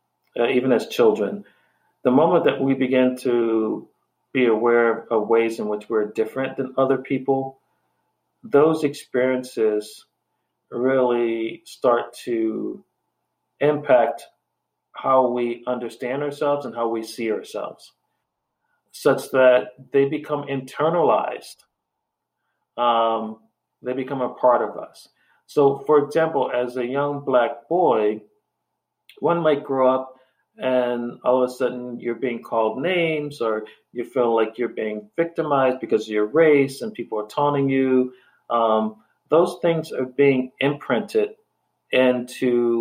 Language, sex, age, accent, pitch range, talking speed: English, male, 40-59, American, 115-140 Hz, 130 wpm